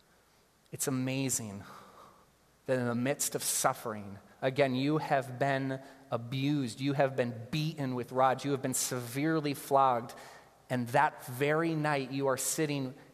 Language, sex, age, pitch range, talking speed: English, male, 30-49, 125-160 Hz, 140 wpm